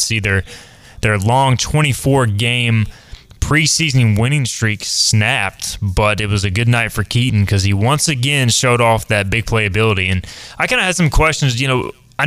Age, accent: 20-39, American